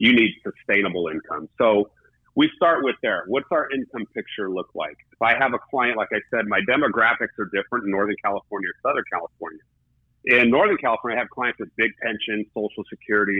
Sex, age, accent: male, 40-59, American